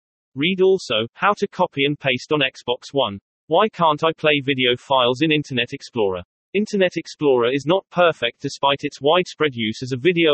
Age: 40-59